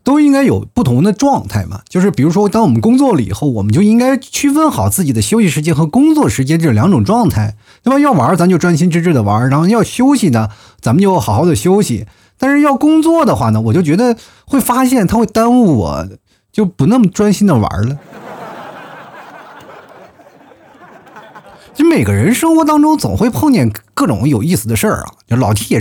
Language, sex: Chinese, male